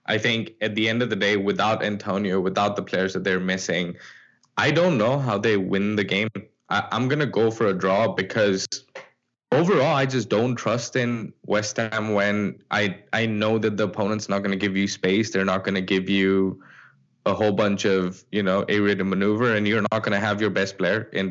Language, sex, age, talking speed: English, male, 10-29, 220 wpm